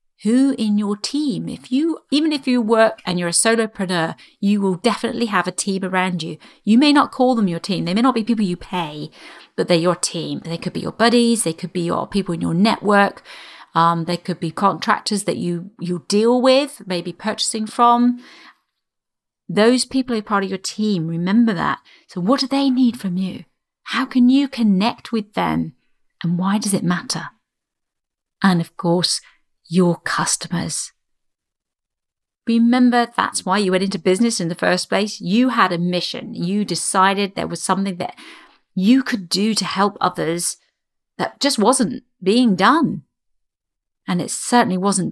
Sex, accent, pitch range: female, British, 180-235 Hz